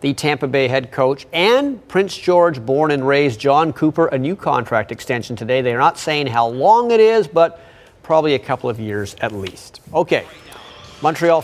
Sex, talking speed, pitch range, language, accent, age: male, 185 wpm, 135-170 Hz, English, American, 40-59